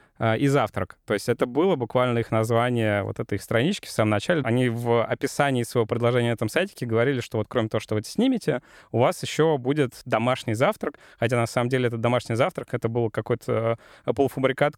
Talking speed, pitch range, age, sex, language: 195 wpm, 120-150 Hz, 20-39, male, Russian